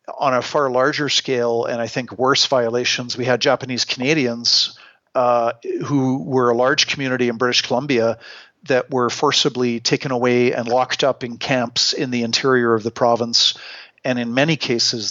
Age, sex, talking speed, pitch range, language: 50-69, male, 170 wpm, 120-140 Hz, English